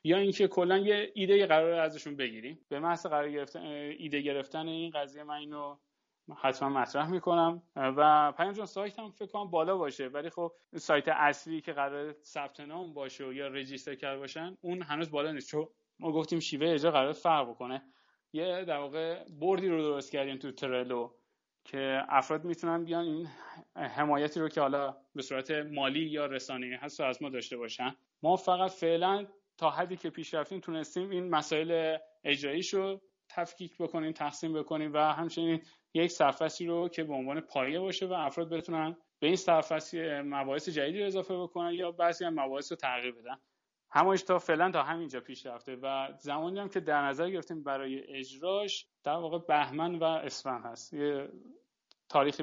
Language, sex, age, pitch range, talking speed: Persian, male, 30-49, 140-170 Hz, 165 wpm